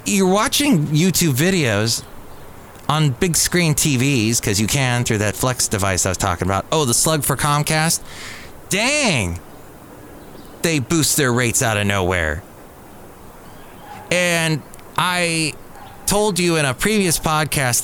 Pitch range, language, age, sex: 105-145 Hz, English, 30-49, male